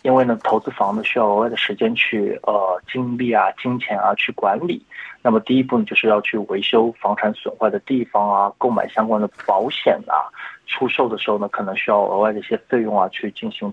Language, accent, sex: Chinese, native, male